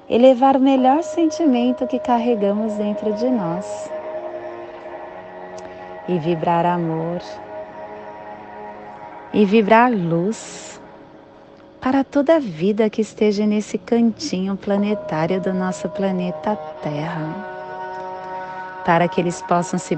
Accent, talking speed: Brazilian, 100 wpm